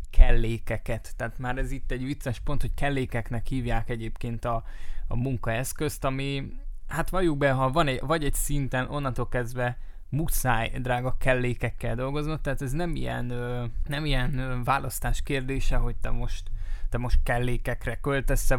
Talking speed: 150 wpm